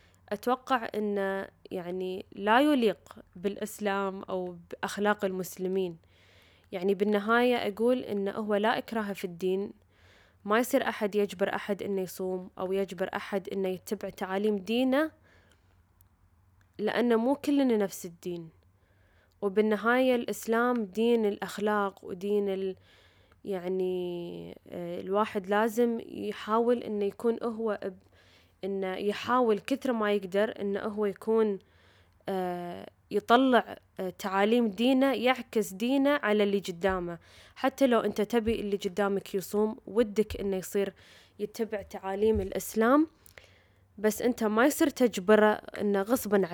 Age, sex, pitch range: 10-29, female, 185-225 Hz